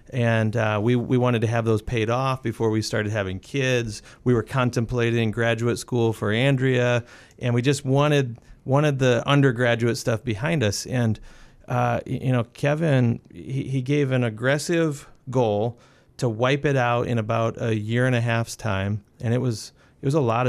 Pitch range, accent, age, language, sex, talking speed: 115-135 Hz, American, 40-59, English, male, 180 wpm